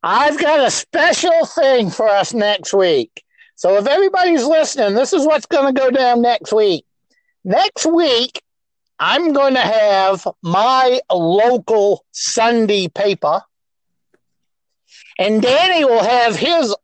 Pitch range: 200-270 Hz